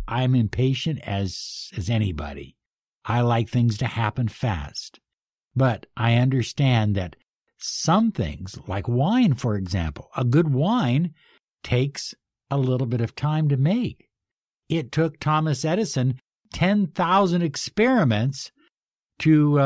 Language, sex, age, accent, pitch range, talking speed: English, male, 60-79, American, 120-170 Hz, 120 wpm